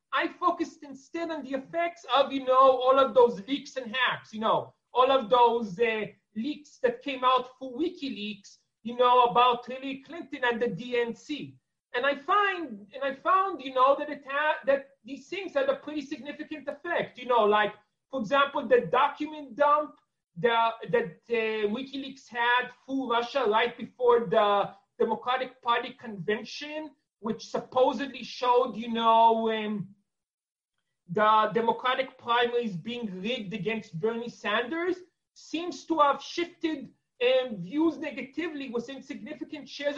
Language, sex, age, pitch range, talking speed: English, male, 30-49, 225-280 Hz, 150 wpm